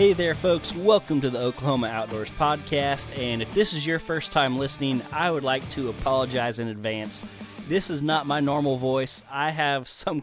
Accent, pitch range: American, 120-145 Hz